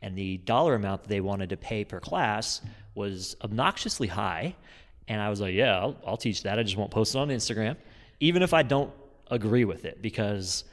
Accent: American